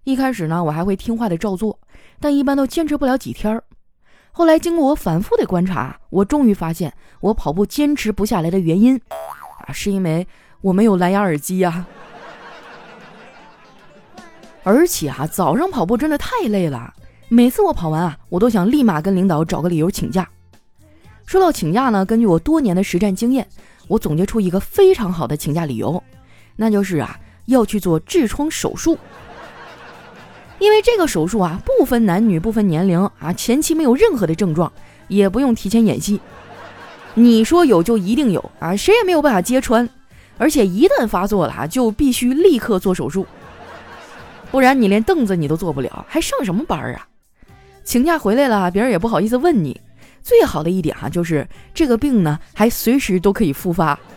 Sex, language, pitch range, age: female, Chinese, 175-260 Hz, 20-39